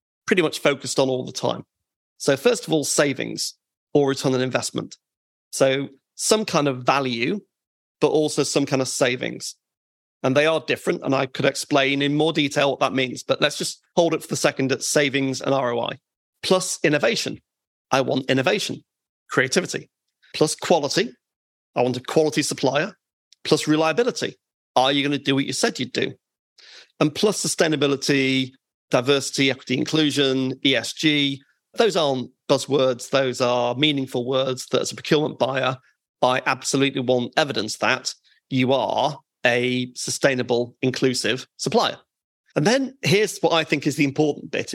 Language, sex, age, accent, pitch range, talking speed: English, male, 40-59, British, 130-155 Hz, 160 wpm